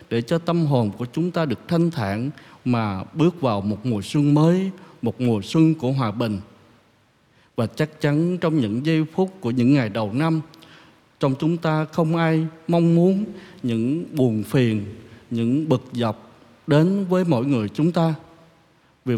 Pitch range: 115-165 Hz